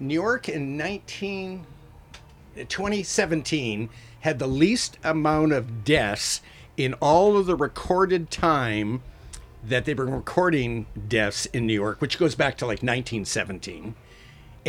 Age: 50-69